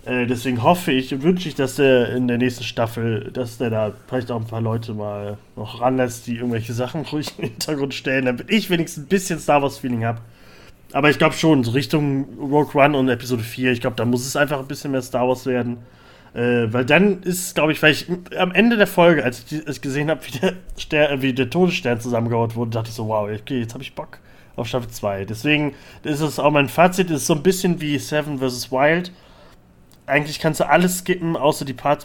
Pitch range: 120-150 Hz